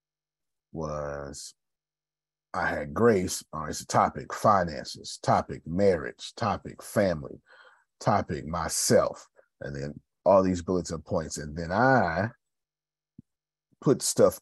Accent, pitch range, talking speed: American, 80-105 Hz, 110 wpm